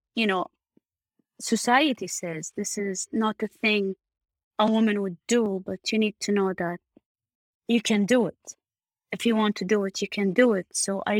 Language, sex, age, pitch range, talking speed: English, female, 20-39, 195-245 Hz, 190 wpm